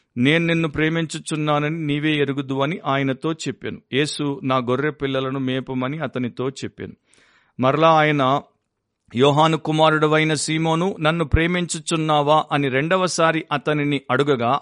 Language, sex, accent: Telugu, male, native